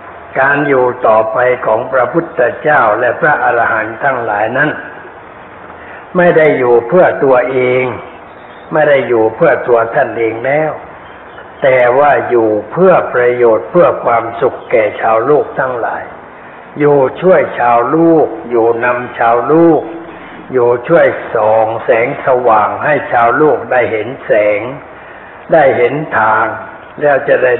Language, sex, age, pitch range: Thai, male, 60-79, 120-160 Hz